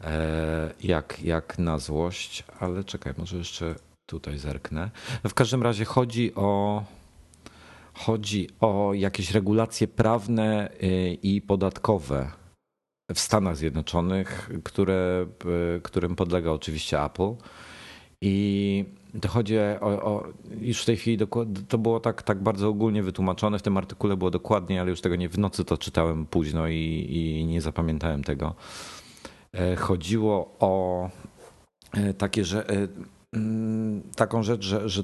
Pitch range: 90-105 Hz